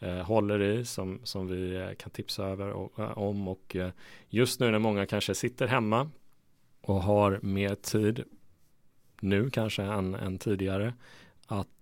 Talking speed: 140 wpm